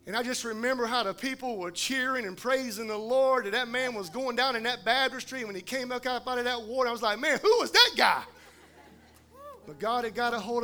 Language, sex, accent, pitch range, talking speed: English, male, American, 220-315 Hz, 255 wpm